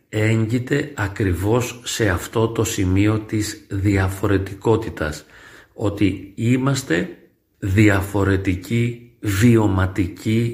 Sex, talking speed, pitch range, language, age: male, 70 wpm, 95-115 Hz, Greek, 40-59